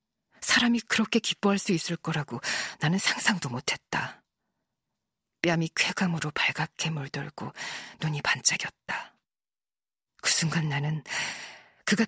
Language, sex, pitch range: Korean, female, 150-185 Hz